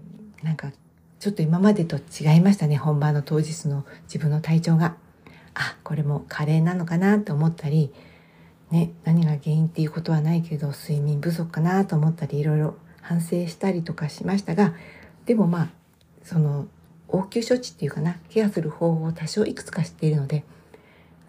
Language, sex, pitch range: Japanese, female, 150-180 Hz